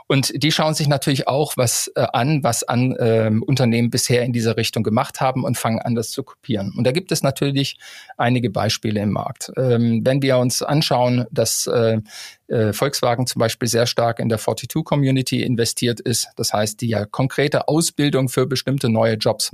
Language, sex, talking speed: German, male, 185 wpm